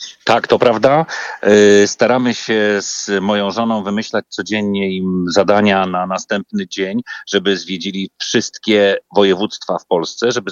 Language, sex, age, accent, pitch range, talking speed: Polish, male, 40-59, native, 100-140 Hz, 125 wpm